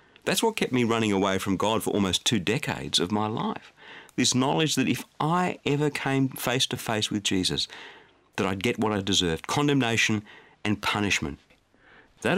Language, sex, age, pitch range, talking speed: English, male, 50-69, 100-150 Hz, 180 wpm